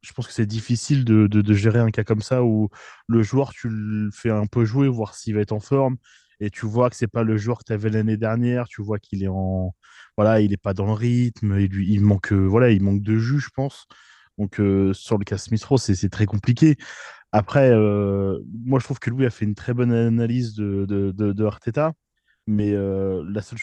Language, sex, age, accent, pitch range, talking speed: French, male, 20-39, French, 105-125 Hz, 250 wpm